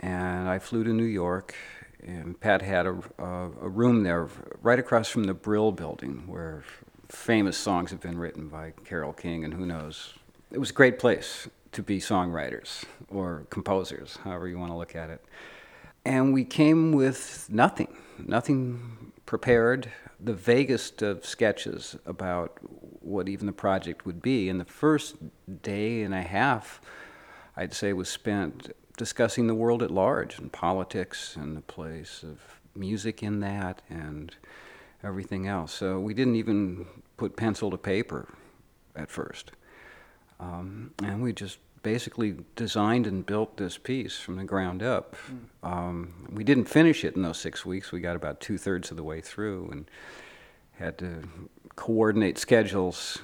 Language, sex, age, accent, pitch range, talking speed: English, male, 50-69, American, 85-110 Hz, 160 wpm